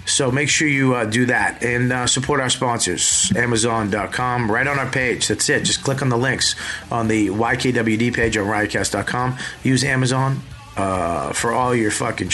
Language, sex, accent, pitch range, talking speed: English, male, American, 115-140 Hz, 180 wpm